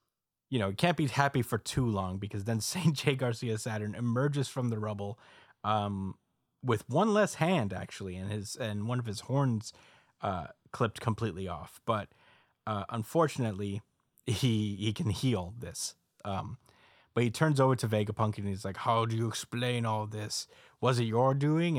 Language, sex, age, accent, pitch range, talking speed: English, male, 20-39, American, 105-130 Hz, 175 wpm